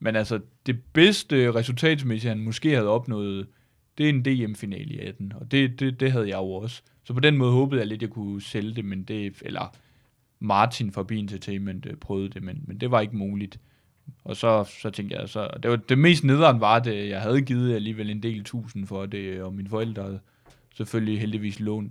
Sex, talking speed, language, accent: male, 215 wpm, Danish, native